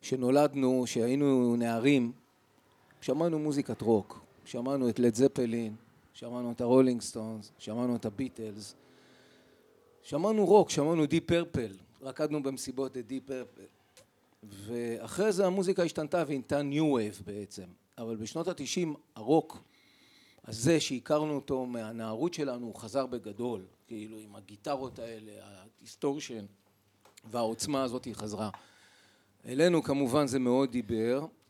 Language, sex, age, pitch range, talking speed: Hebrew, male, 40-59, 115-145 Hz, 115 wpm